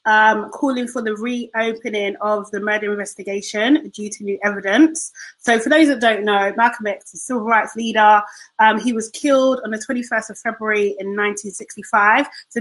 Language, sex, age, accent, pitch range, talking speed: English, female, 30-49, British, 205-255 Hz, 180 wpm